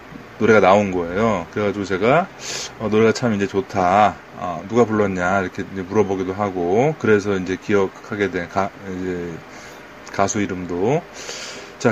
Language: Korean